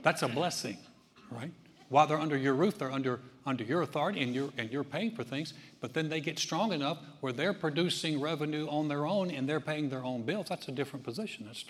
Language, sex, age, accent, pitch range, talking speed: English, male, 60-79, American, 135-165 Hz, 230 wpm